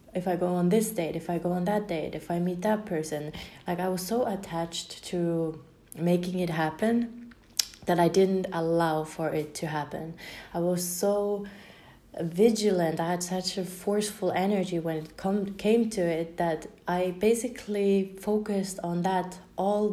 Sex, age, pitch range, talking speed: female, 20-39, 170-195 Hz, 170 wpm